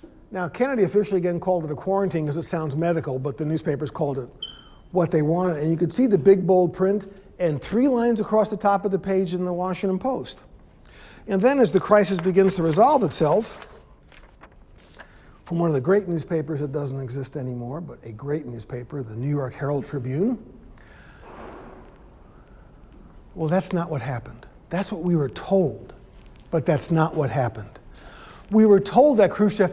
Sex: male